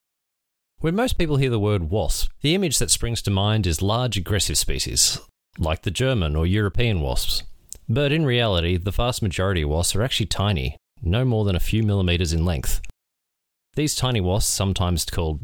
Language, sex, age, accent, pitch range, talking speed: English, male, 30-49, Australian, 85-115 Hz, 185 wpm